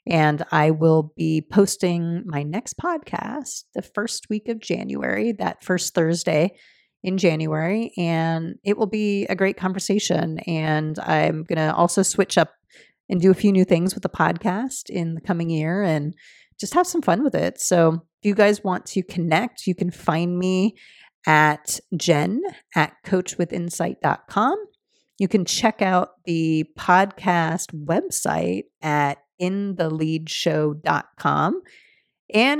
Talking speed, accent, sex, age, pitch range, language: 145 wpm, American, female, 30-49, 165-215 Hz, English